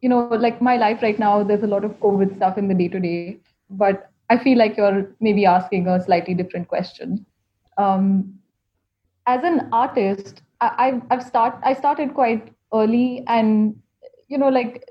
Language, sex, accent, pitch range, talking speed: English, female, Indian, 195-245 Hz, 170 wpm